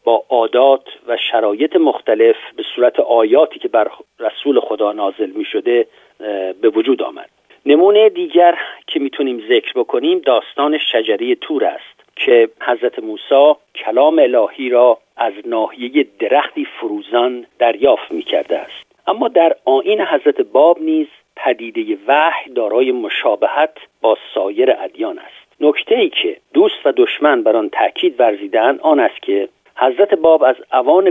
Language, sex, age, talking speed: Persian, male, 50-69, 140 wpm